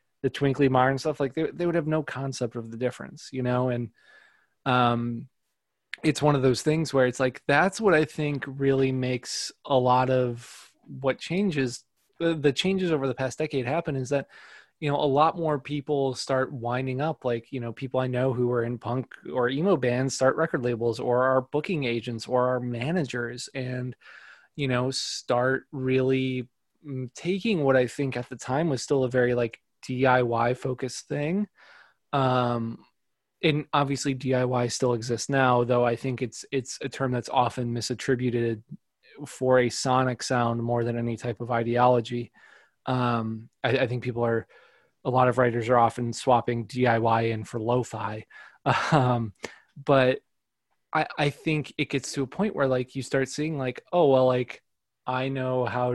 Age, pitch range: 20-39, 120-140 Hz